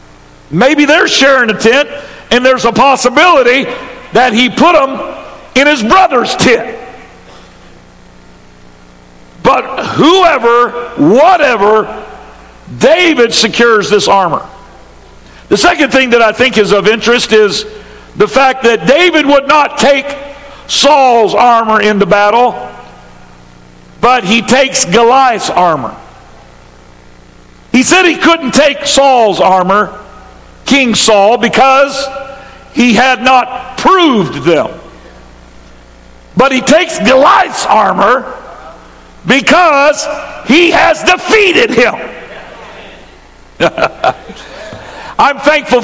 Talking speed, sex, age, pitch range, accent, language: 100 wpm, male, 60-79, 210-285 Hz, American, English